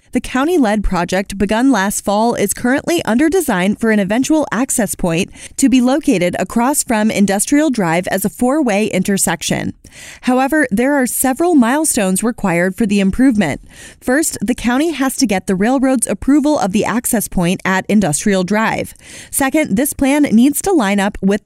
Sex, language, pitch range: female, English, 200-275 Hz